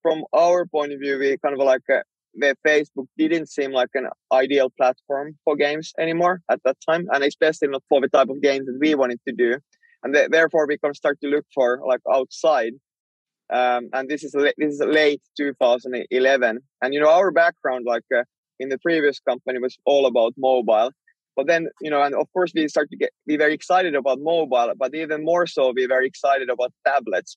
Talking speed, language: 220 wpm, English